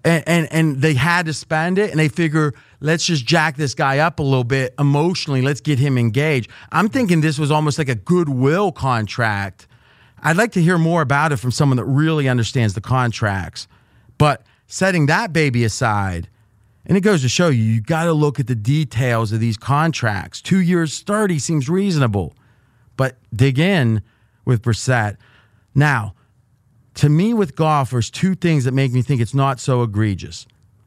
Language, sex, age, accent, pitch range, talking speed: English, male, 30-49, American, 115-160 Hz, 185 wpm